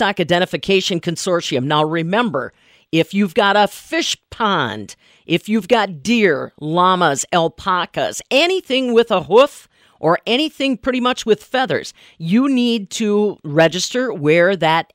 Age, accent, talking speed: 50-69, American, 130 wpm